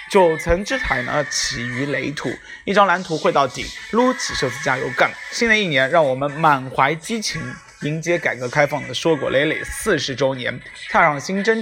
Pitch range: 150-205 Hz